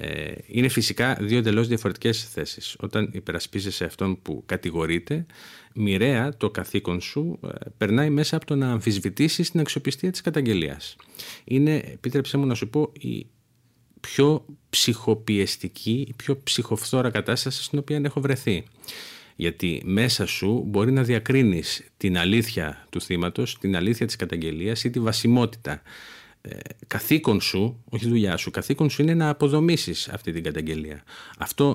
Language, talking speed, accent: Greek, 140 wpm, native